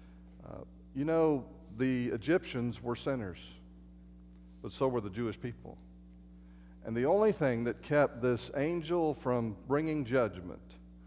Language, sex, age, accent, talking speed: English, male, 40-59, American, 125 wpm